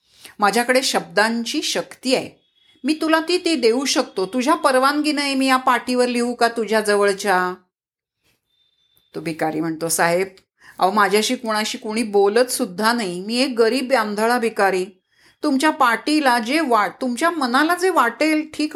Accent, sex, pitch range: native, female, 210-295 Hz